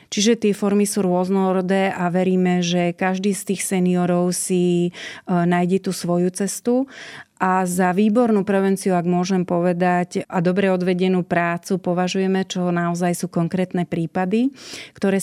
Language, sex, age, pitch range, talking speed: Slovak, female, 30-49, 175-195 Hz, 140 wpm